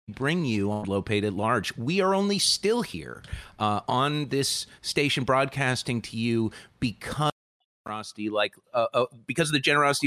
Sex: male